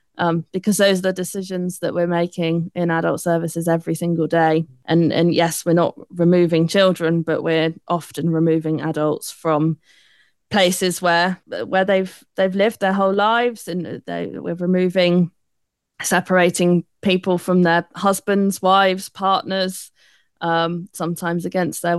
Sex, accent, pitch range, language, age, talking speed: female, British, 165-190 Hz, English, 20-39, 140 wpm